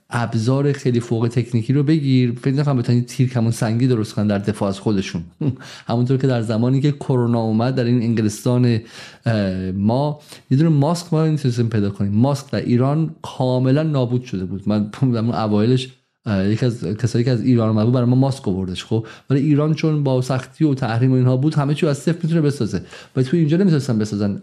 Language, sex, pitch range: Persian, male, 115-140 Hz